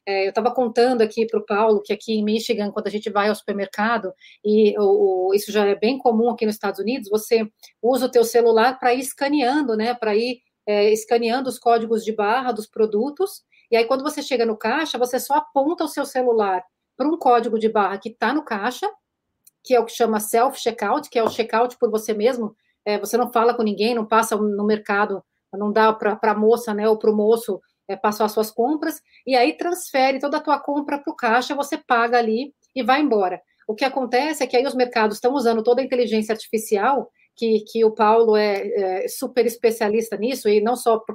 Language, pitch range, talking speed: Portuguese, 215-255 Hz, 220 wpm